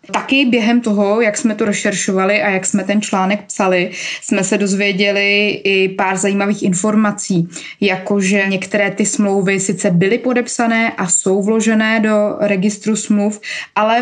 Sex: female